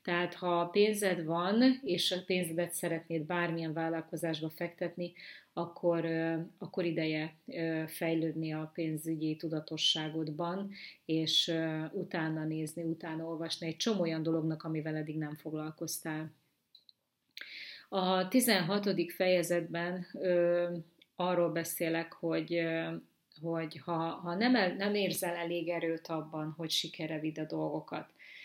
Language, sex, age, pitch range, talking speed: Hungarian, female, 30-49, 160-175 Hz, 110 wpm